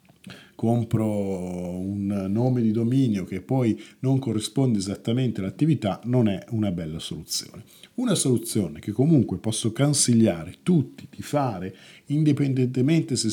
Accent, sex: native, male